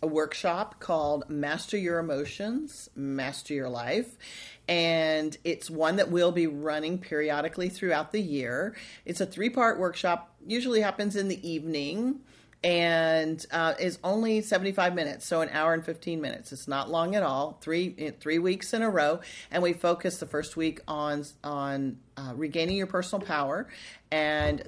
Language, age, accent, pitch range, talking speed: English, 40-59, American, 145-175 Hz, 160 wpm